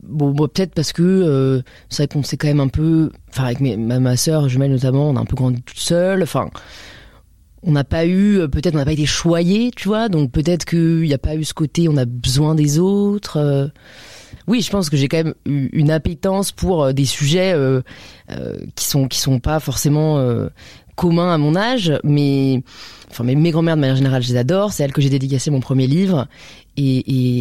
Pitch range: 130-165 Hz